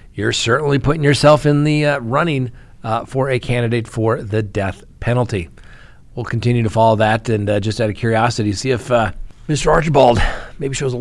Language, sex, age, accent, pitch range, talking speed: English, male, 40-59, American, 110-140 Hz, 190 wpm